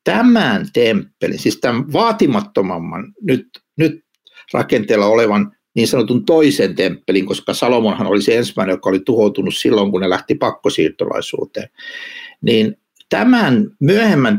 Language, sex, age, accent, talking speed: Finnish, male, 60-79, native, 120 wpm